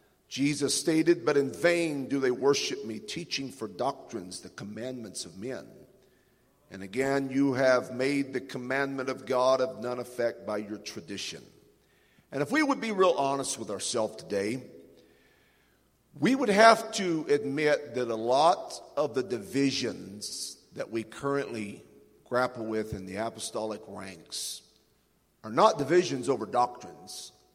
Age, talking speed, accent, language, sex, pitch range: 50-69, 145 wpm, American, English, male, 115-150 Hz